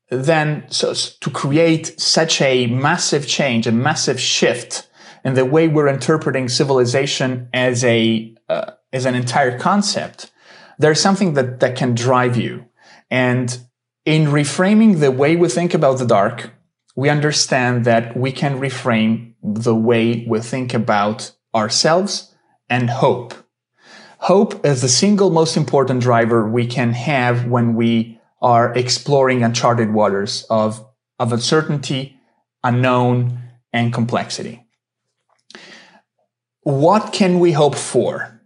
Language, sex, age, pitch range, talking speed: English, male, 30-49, 120-160 Hz, 125 wpm